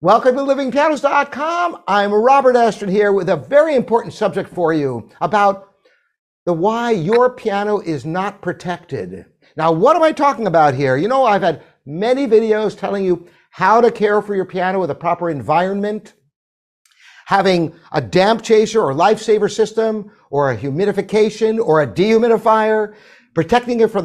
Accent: American